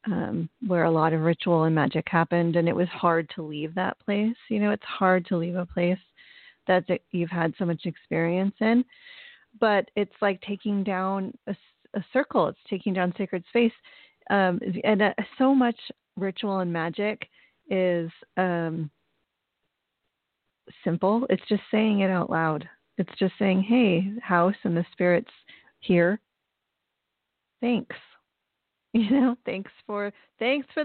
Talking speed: 155 wpm